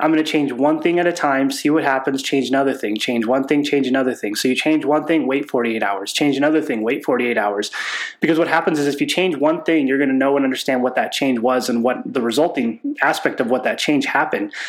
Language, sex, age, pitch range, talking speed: English, male, 20-39, 130-155 Hz, 260 wpm